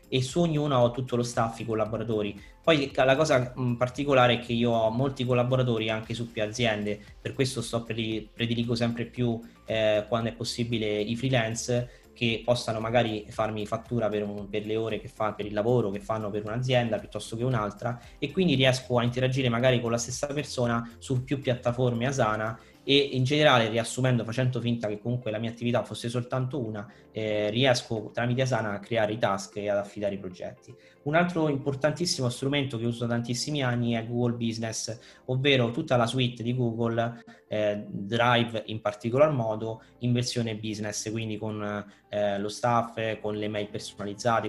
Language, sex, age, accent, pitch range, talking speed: Italian, male, 20-39, native, 110-130 Hz, 180 wpm